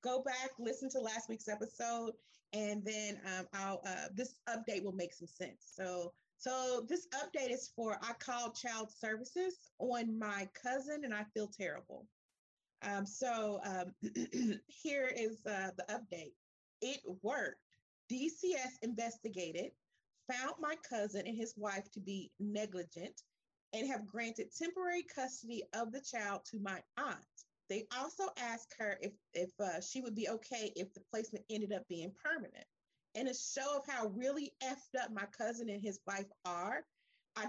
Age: 40-59